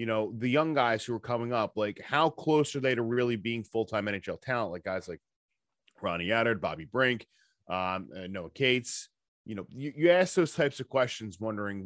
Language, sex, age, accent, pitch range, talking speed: English, male, 20-39, American, 110-135 Hz, 205 wpm